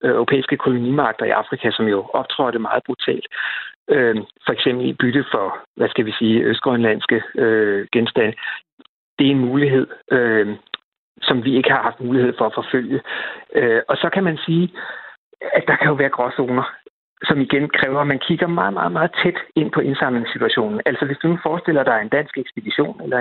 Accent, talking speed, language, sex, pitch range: native, 180 wpm, Danish, male, 125-165 Hz